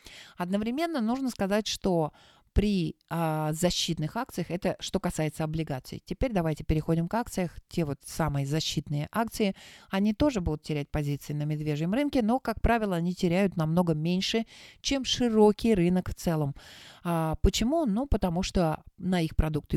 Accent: native